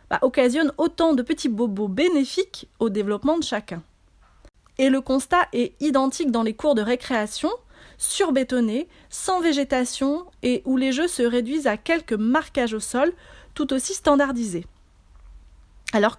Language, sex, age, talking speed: French, female, 30-49, 140 wpm